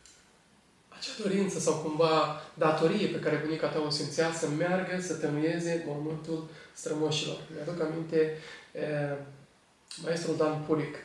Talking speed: 130 wpm